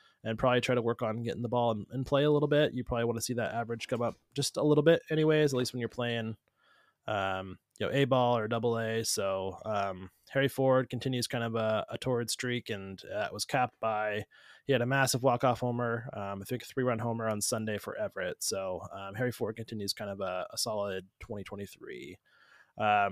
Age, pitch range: 20-39, 110-135 Hz